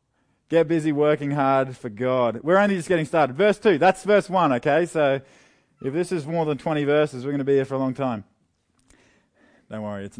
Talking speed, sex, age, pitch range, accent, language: 220 wpm, male, 20-39, 130-165 Hz, Australian, English